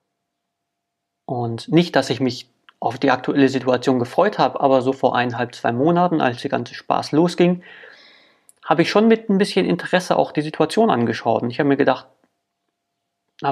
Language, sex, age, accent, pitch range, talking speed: German, male, 30-49, German, 125-160 Hz, 175 wpm